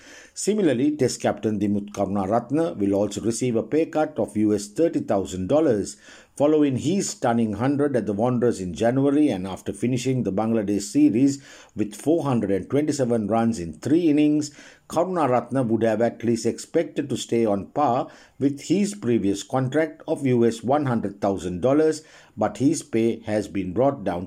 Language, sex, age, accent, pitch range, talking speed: English, male, 50-69, Indian, 105-140 Hz, 145 wpm